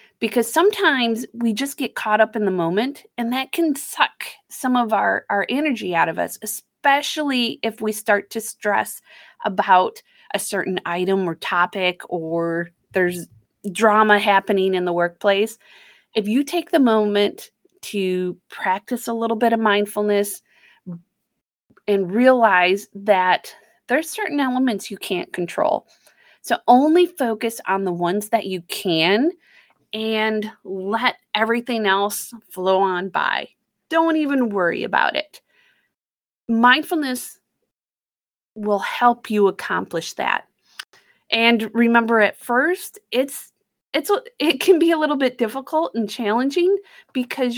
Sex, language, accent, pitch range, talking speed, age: female, English, American, 200-255 Hz, 130 wpm, 30-49